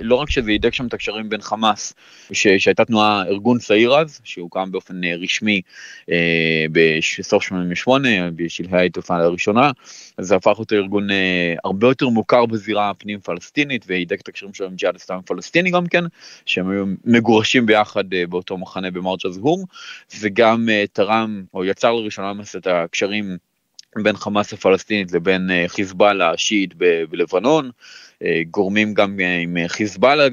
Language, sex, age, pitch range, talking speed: Hebrew, male, 20-39, 90-115 Hz, 145 wpm